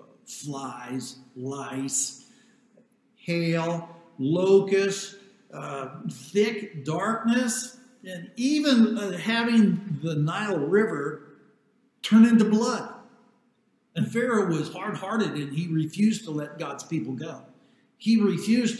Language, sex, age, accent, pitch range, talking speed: English, male, 60-79, American, 145-210 Hz, 100 wpm